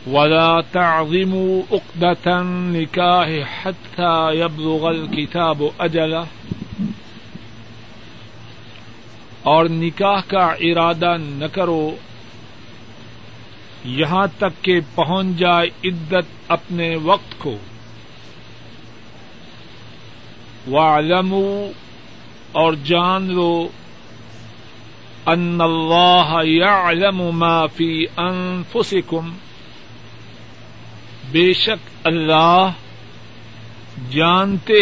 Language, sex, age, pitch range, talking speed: Urdu, male, 50-69, 115-180 Hz, 65 wpm